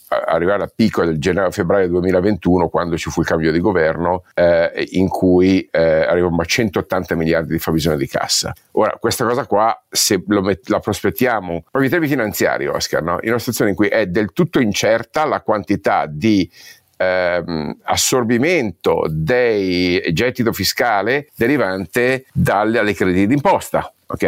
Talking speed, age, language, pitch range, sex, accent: 155 wpm, 50-69, Italian, 90-120 Hz, male, native